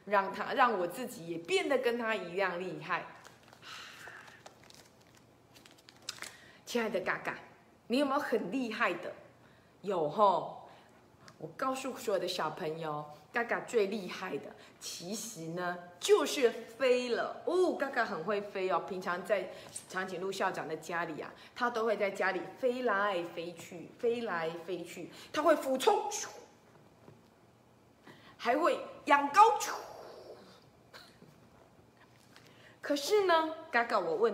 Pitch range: 185-280 Hz